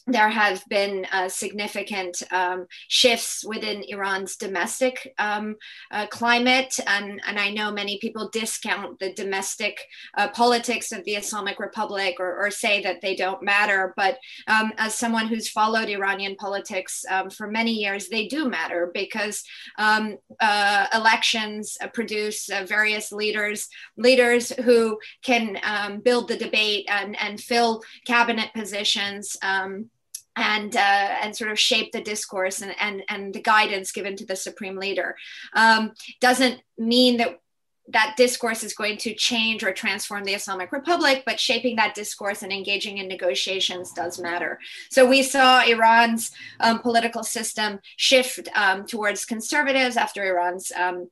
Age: 30-49